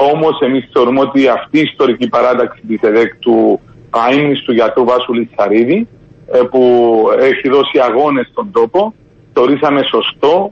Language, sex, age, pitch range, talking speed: Greek, male, 40-59, 125-170 Hz, 130 wpm